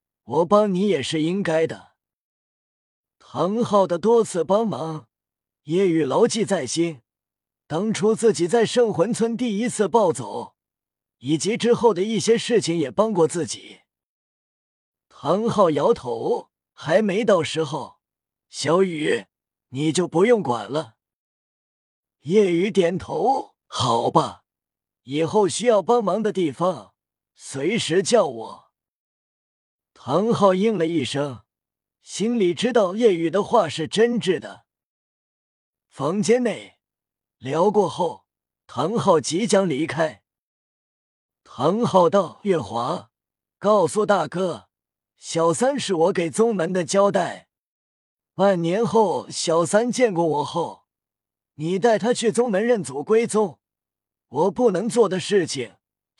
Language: Chinese